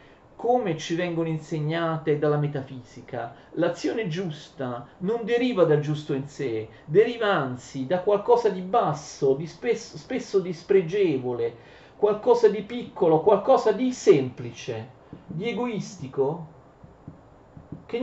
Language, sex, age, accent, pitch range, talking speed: Italian, male, 40-59, native, 155-215 Hz, 110 wpm